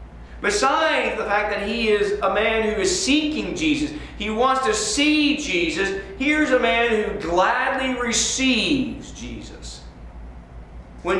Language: English